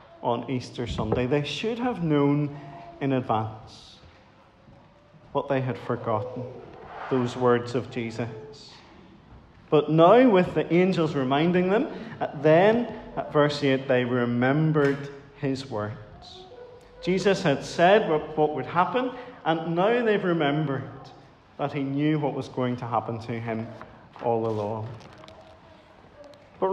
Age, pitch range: 40-59, 125-175 Hz